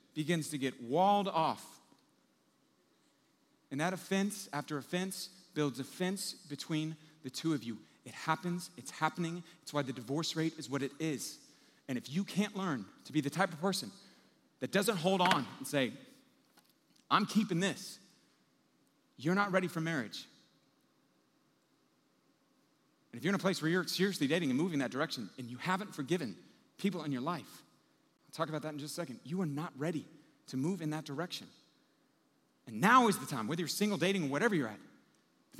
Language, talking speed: English, 180 wpm